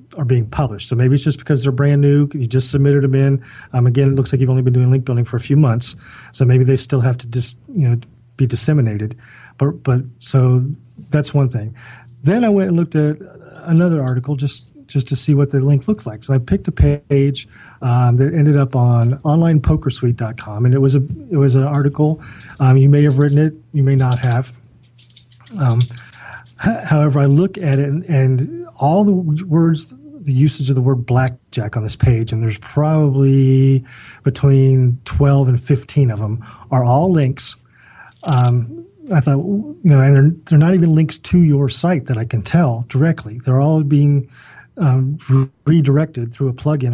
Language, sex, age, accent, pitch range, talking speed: English, male, 40-59, American, 125-145 Hz, 195 wpm